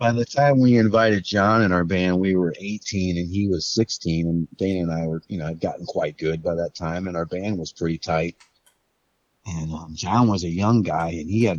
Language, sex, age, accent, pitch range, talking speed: English, male, 30-49, American, 85-100 Hz, 240 wpm